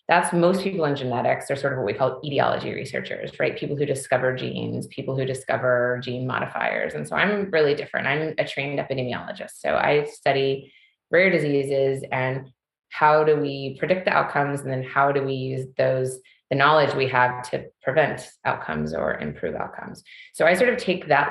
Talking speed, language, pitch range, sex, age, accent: 190 wpm, English, 135-155 Hz, female, 20-39, American